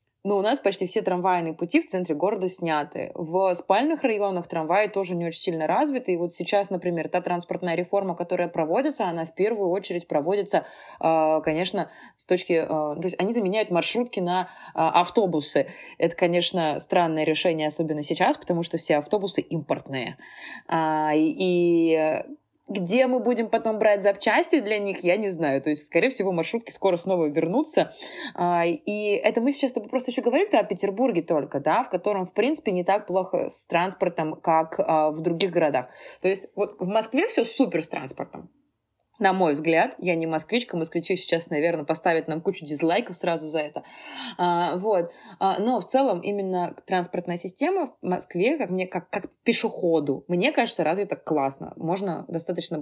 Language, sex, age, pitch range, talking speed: Russian, female, 20-39, 165-205 Hz, 165 wpm